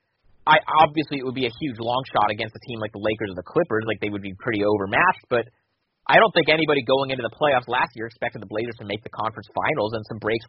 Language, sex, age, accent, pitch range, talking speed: English, male, 30-49, American, 110-140 Hz, 265 wpm